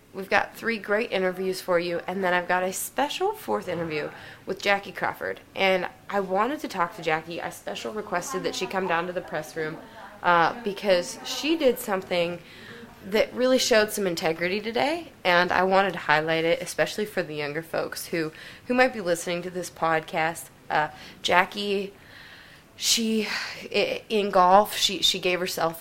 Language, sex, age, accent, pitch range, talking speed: English, female, 20-39, American, 160-190 Hz, 175 wpm